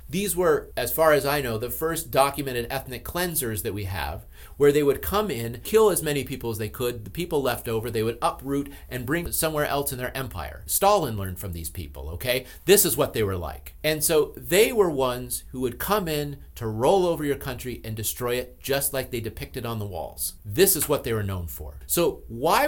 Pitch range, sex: 110-150 Hz, male